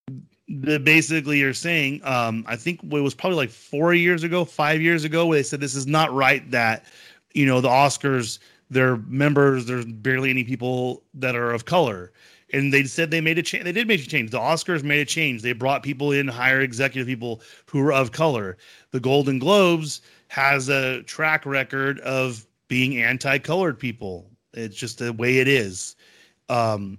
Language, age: English, 30-49